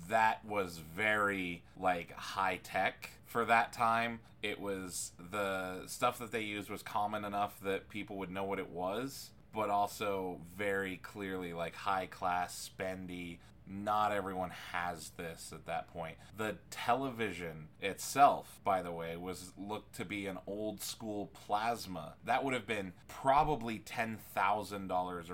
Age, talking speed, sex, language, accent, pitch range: 20-39, 140 wpm, male, English, American, 90-105 Hz